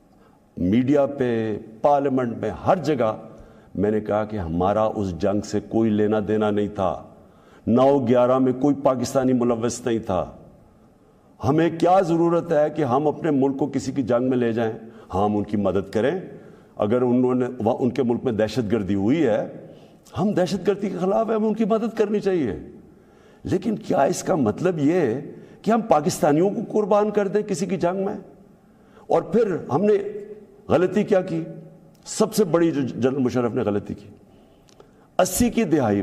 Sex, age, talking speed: male, 60-79, 155 wpm